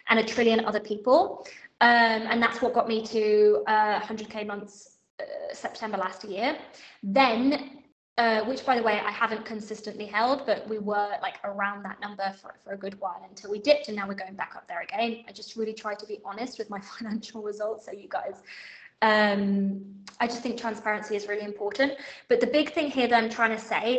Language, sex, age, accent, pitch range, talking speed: English, female, 20-39, British, 205-235 Hz, 210 wpm